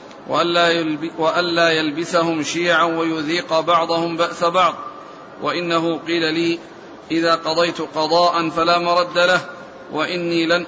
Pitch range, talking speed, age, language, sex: 165-180 Hz, 100 wpm, 50-69, Arabic, male